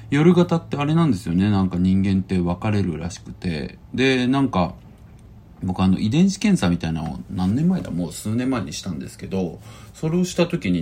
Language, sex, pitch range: Japanese, male, 85-120 Hz